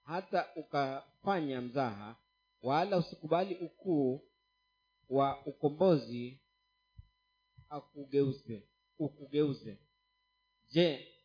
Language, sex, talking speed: Swahili, male, 55 wpm